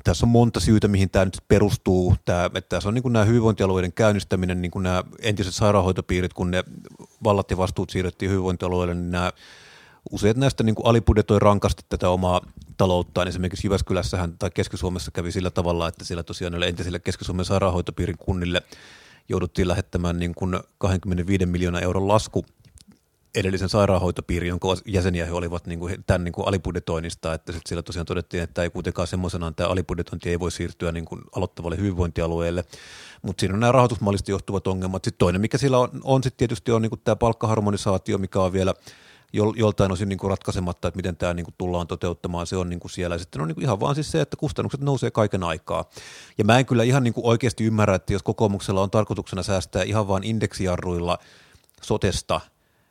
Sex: male